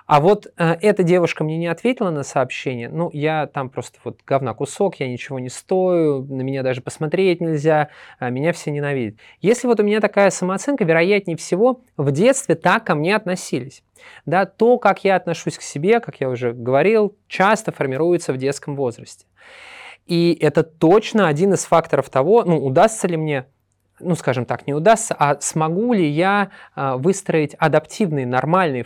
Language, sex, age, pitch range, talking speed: Russian, male, 20-39, 135-180 Hz, 170 wpm